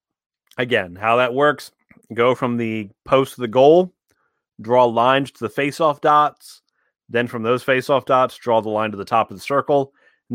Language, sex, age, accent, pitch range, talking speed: English, male, 30-49, American, 115-135 Hz, 185 wpm